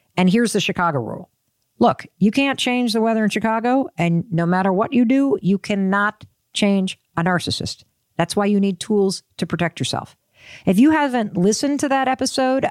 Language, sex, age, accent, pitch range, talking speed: English, female, 50-69, American, 170-230 Hz, 185 wpm